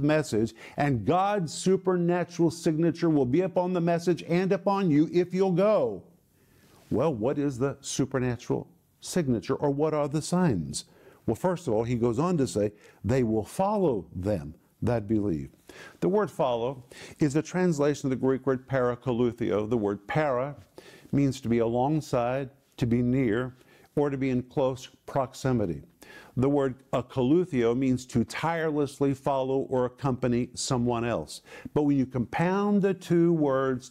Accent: American